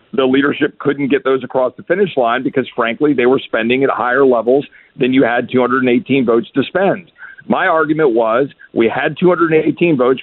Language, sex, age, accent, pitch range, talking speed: English, male, 50-69, American, 130-160 Hz, 180 wpm